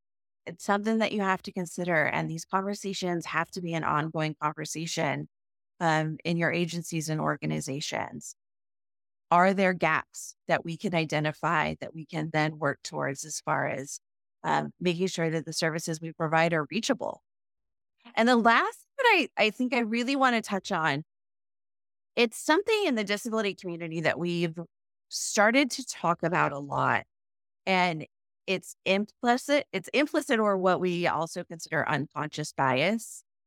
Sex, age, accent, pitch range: female, 30-49, American, 165-215 Hz